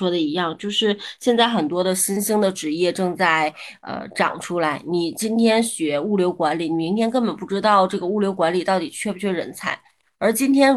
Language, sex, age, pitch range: Chinese, female, 20-39, 170-210 Hz